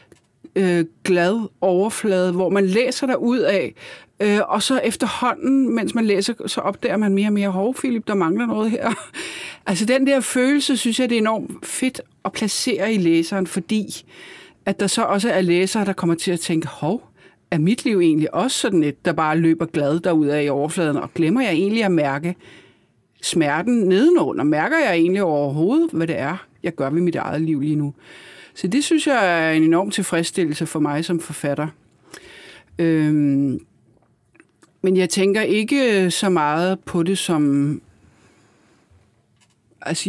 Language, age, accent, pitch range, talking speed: Danish, 60-79, native, 160-225 Hz, 170 wpm